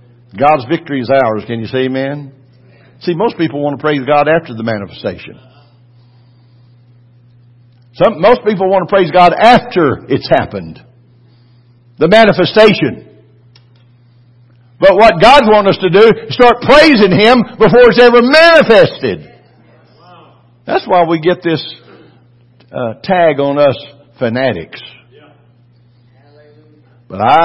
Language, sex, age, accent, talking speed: English, male, 60-79, American, 120 wpm